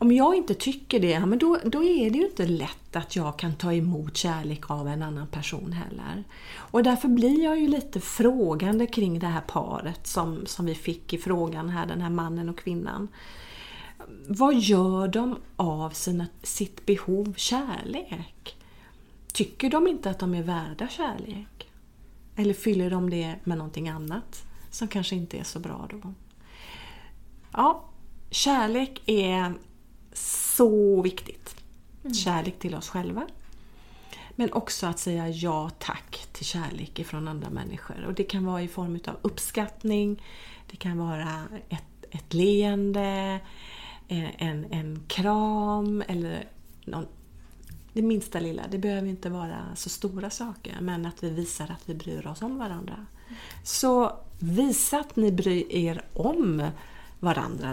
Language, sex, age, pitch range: Swedish, female, 40-59, 170-215 Hz